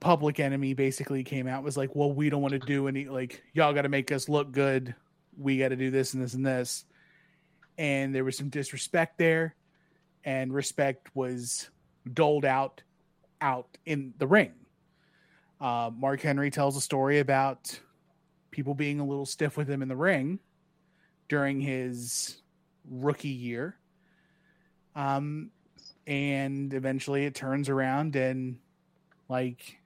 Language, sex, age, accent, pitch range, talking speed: English, male, 30-49, American, 135-175 Hz, 150 wpm